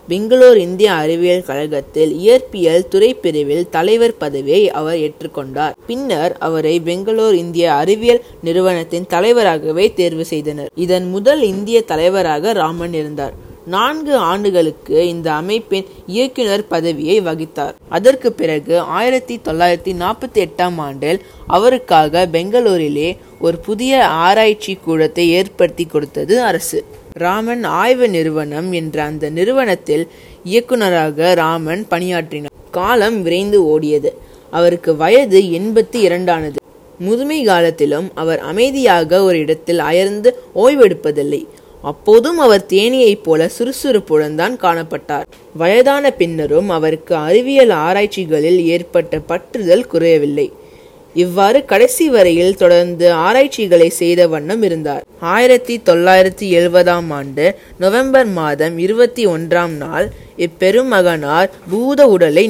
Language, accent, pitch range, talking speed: Tamil, native, 165-225 Hz, 105 wpm